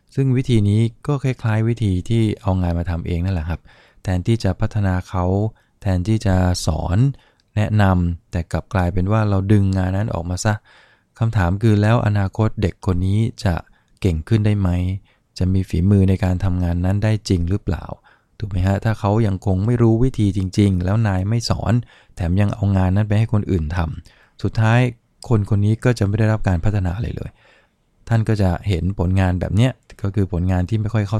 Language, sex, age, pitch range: English, male, 20-39, 95-115 Hz